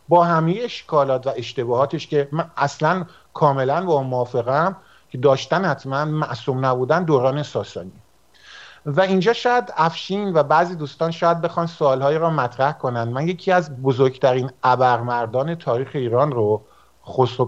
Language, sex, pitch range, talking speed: Persian, male, 130-170 Hz, 140 wpm